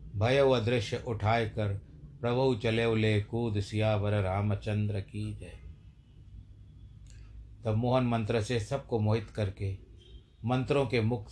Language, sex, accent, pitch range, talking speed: Hindi, male, native, 105-120 Hz, 120 wpm